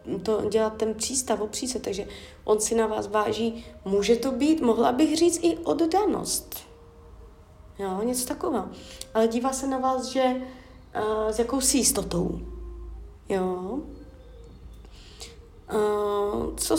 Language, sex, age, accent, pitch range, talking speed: Czech, female, 20-39, native, 195-245 Hz, 125 wpm